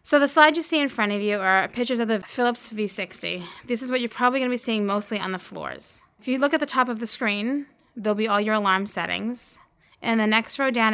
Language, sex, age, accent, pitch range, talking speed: English, female, 10-29, American, 200-245 Hz, 265 wpm